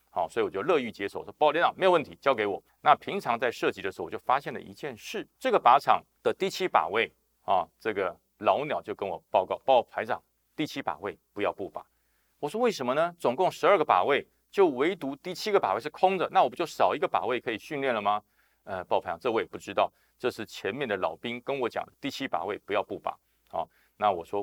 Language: Chinese